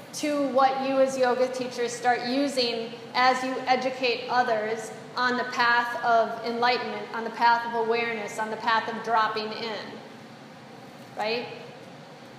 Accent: American